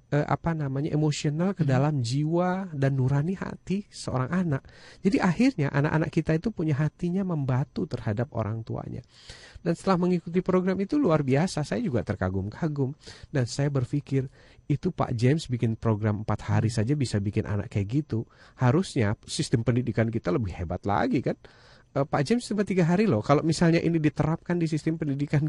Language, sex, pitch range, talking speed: Indonesian, male, 125-170 Hz, 160 wpm